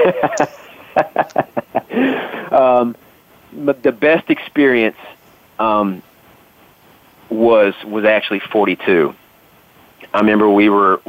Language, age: English, 40-59